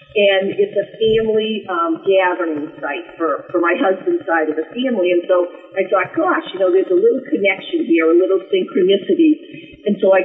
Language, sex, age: English, female, 50-69